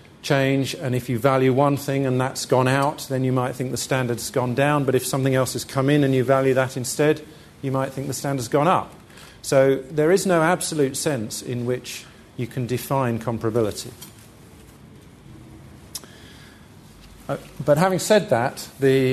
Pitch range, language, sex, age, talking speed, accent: 115-140 Hz, English, male, 40-59, 175 wpm, British